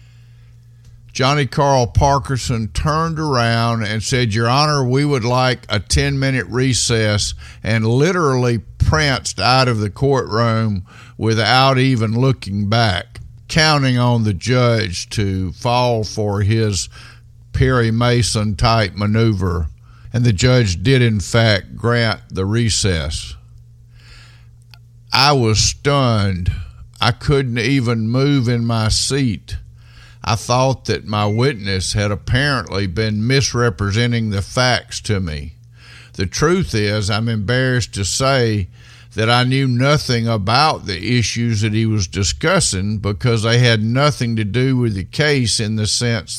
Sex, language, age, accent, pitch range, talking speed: male, English, 50-69, American, 105-125 Hz, 130 wpm